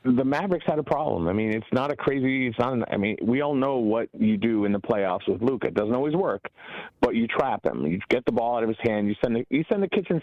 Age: 30-49